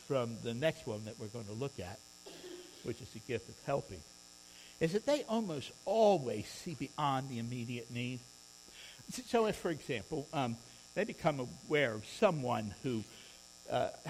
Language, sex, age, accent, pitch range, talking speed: English, male, 60-79, American, 110-180 Hz, 160 wpm